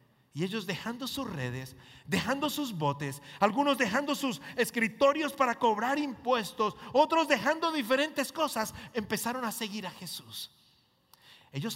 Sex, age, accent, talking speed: male, 40-59, Mexican, 130 wpm